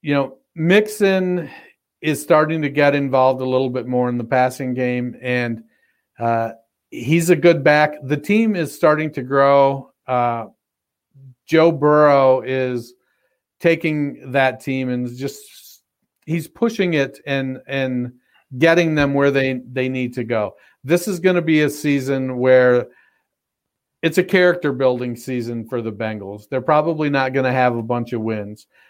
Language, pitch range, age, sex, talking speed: English, 125-150 Hz, 50-69, male, 155 wpm